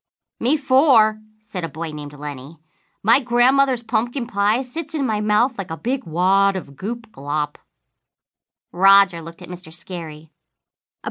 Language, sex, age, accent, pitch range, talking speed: English, female, 40-59, American, 165-250 Hz, 145 wpm